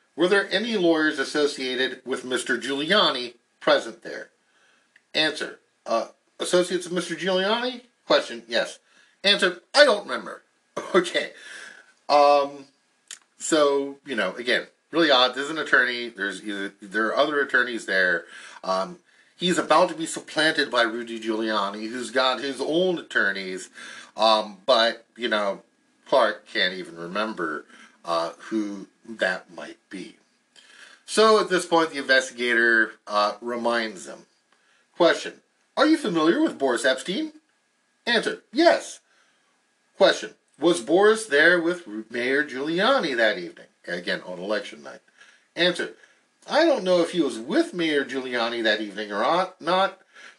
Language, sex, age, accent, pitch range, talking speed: English, male, 50-69, American, 120-185 Hz, 135 wpm